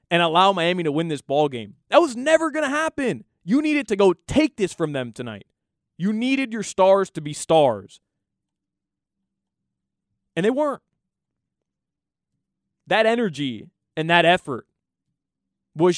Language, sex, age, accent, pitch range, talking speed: English, male, 20-39, American, 140-190 Hz, 145 wpm